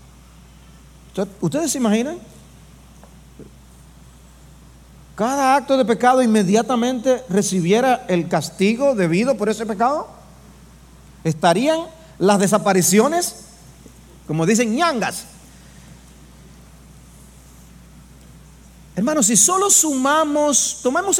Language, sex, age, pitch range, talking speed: English, male, 40-59, 160-265 Hz, 75 wpm